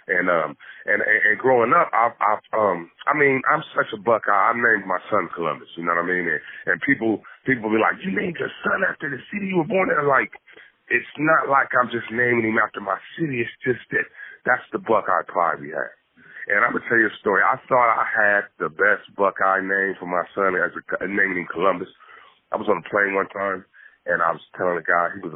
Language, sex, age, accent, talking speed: English, male, 30-49, American, 235 wpm